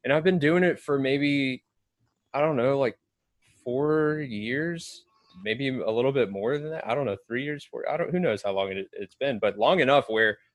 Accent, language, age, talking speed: American, English, 20-39, 220 wpm